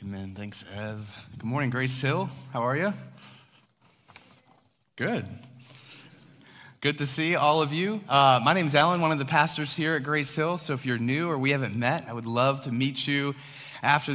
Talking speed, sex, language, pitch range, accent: 190 wpm, male, English, 125-150 Hz, American